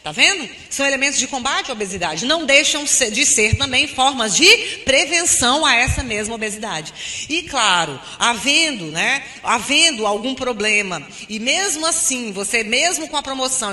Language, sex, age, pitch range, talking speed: Portuguese, female, 30-49, 205-265 Hz, 155 wpm